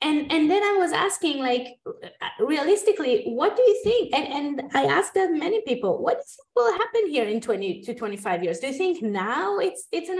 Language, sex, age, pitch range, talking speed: English, female, 20-39, 215-330 Hz, 205 wpm